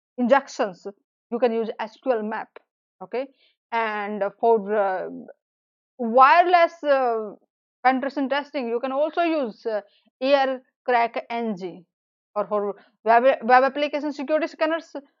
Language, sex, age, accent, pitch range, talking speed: English, female, 20-39, Indian, 215-295 Hz, 115 wpm